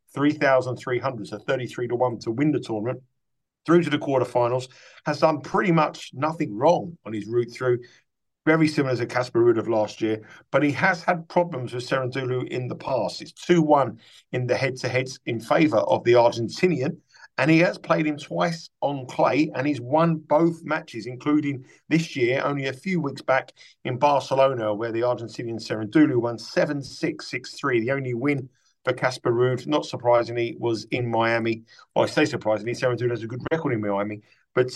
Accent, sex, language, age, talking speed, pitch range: British, male, English, 50-69, 185 wpm, 125-160 Hz